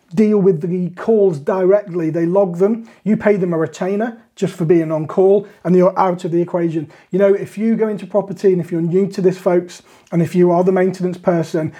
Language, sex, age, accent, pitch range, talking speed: English, male, 30-49, British, 170-200 Hz, 230 wpm